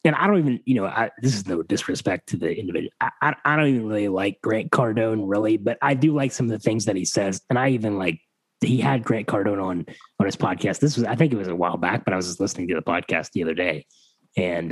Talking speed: 275 wpm